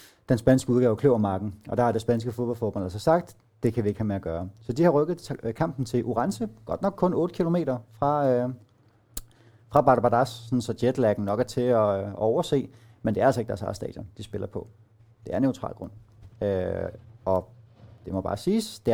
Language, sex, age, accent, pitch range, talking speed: Danish, male, 30-49, native, 105-145 Hz, 210 wpm